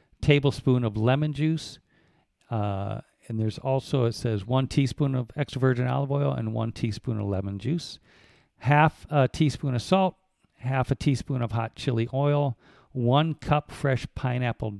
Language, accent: English, American